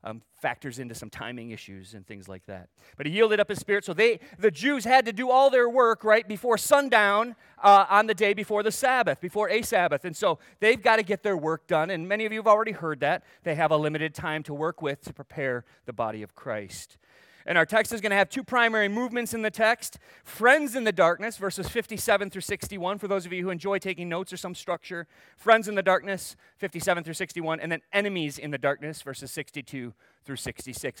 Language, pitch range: English, 150-210 Hz